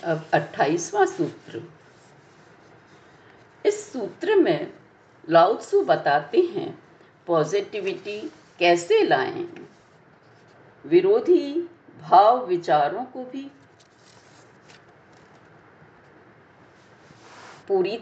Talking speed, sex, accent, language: 60 wpm, female, native, Hindi